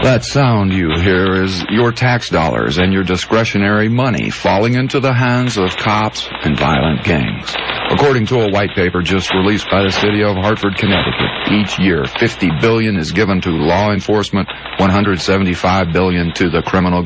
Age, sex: 50-69, male